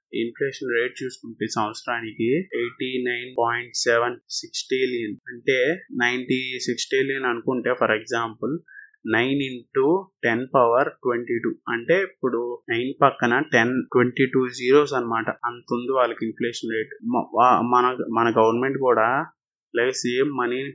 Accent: native